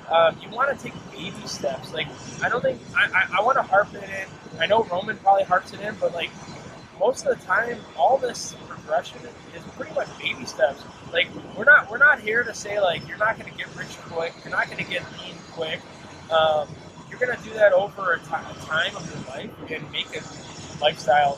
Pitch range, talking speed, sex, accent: 165-220 Hz, 225 wpm, male, American